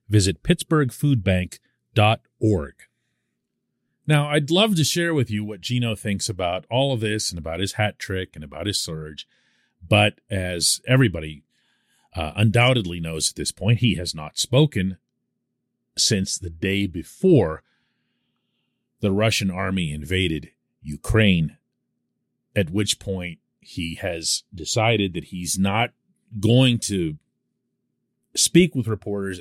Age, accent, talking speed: 40-59, American, 125 wpm